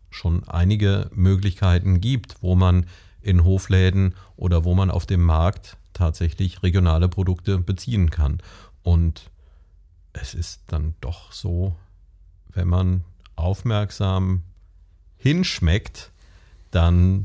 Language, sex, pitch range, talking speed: German, male, 85-105 Hz, 105 wpm